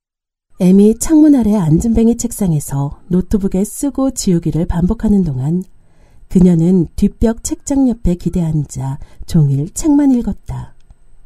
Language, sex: Korean, female